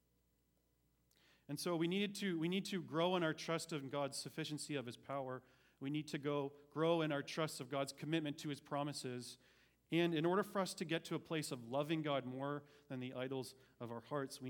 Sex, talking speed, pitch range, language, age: male, 215 wpm, 115-165 Hz, English, 40-59